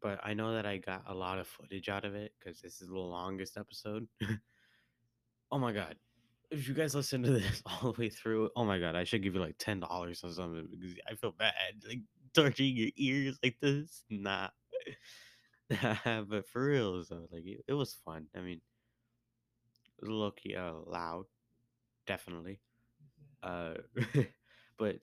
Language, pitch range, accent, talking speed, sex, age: English, 95-120 Hz, American, 170 wpm, male, 20-39